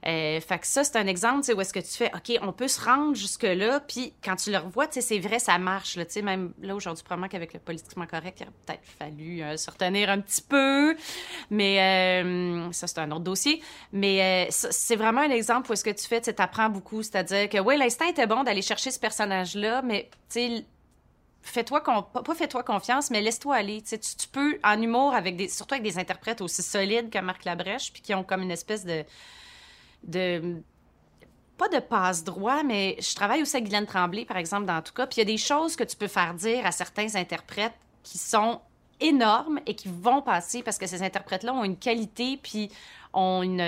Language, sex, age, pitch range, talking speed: French, female, 30-49, 185-235 Hz, 215 wpm